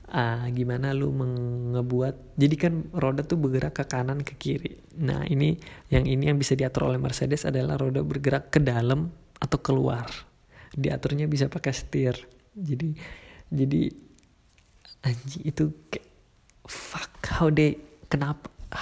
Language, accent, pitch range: Indonesian, native, 130-155 Hz